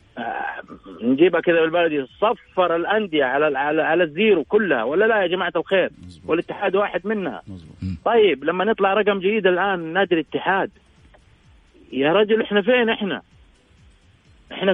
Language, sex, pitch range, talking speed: English, male, 165-200 Hz, 135 wpm